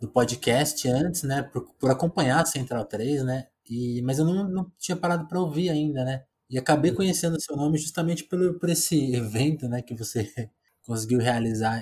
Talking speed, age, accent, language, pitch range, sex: 195 wpm, 20-39, Brazilian, Portuguese, 115-145 Hz, male